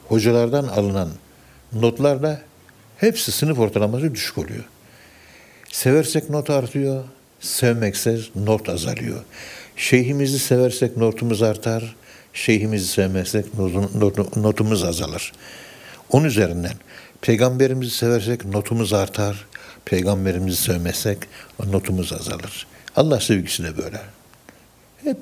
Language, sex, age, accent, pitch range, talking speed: Turkish, male, 60-79, native, 100-125 Hz, 85 wpm